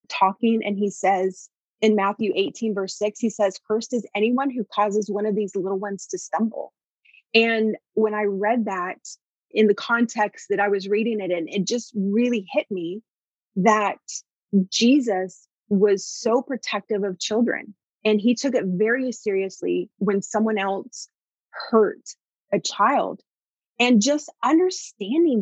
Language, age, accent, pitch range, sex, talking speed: English, 30-49, American, 195-235 Hz, female, 150 wpm